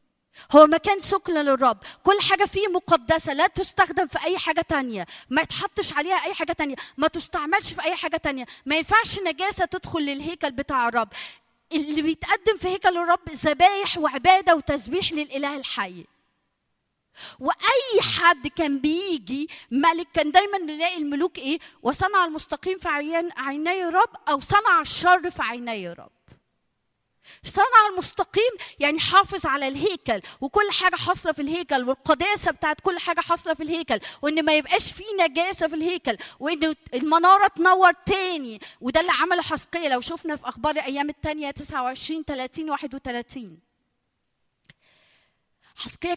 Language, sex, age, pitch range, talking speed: Arabic, female, 20-39, 280-360 Hz, 145 wpm